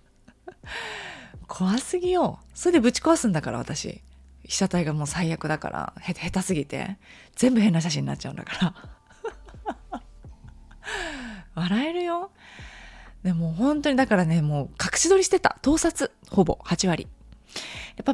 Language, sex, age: Japanese, female, 20-39